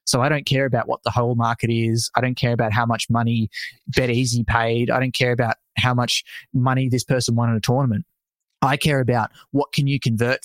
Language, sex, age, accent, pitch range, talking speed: English, male, 20-39, Australian, 115-130 Hz, 225 wpm